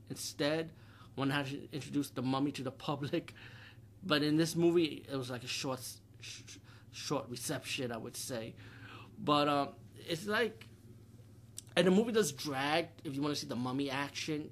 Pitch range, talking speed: 115-150 Hz, 175 wpm